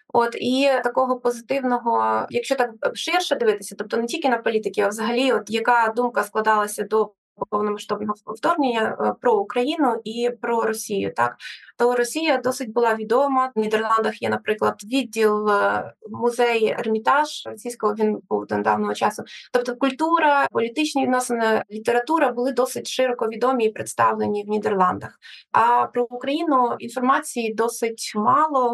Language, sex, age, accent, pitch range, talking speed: Ukrainian, female, 20-39, native, 215-255 Hz, 135 wpm